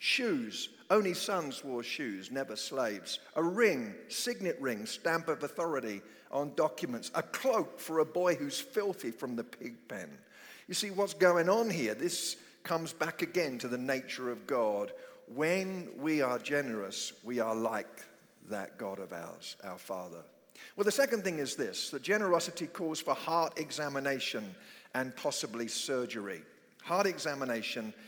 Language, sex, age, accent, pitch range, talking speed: English, male, 50-69, British, 130-190 Hz, 155 wpm